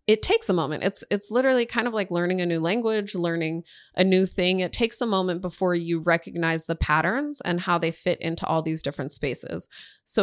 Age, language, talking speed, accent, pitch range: 20-39, English, 215 wpm, American, 165-205 Hz